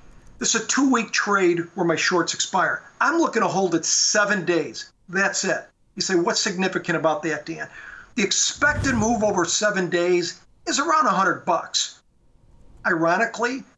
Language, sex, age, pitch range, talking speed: English, male, 50-69, 175-225 Hz, 155 wpm